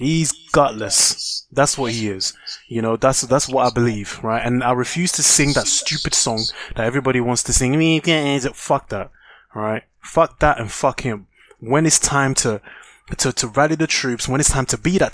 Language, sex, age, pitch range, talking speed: English, male, 20-39, 115-150 Hz, 200 wpm